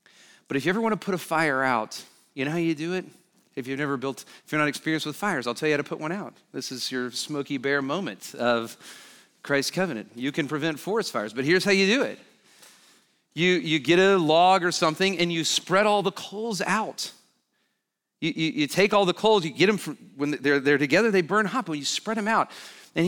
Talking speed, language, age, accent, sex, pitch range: 240 wpm, English, 40-59, American, male, 150-215 Hz